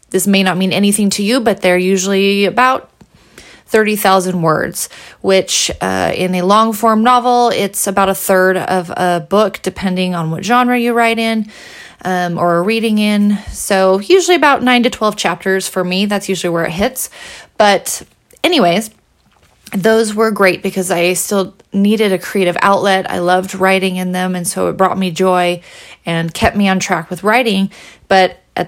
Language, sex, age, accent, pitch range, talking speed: English, female, 30-49, American, 185-220 Hz, 175 wpm